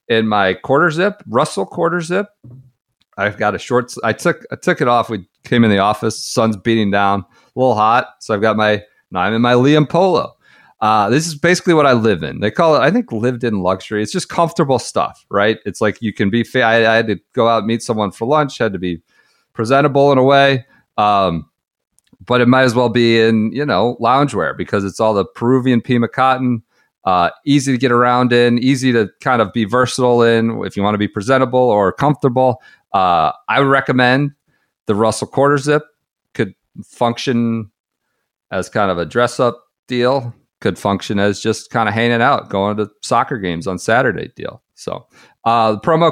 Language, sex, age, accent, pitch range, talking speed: English, male, 40-59, American, 105-130 Hz, 205 wpm